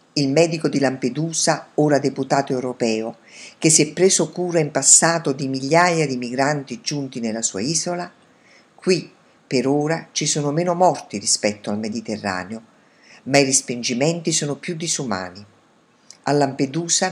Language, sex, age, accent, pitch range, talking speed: Italian, female, 50-69, native, 125-170 Hz, 140 wpm